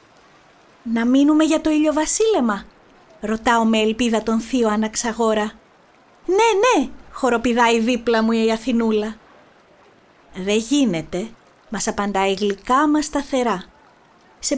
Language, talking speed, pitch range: Greek, 105 wpm, 225-315 Hz